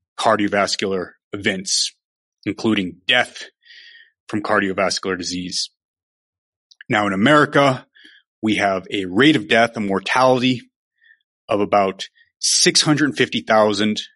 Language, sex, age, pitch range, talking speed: English, male, 30-49, 105-155 Hz, 90 wpm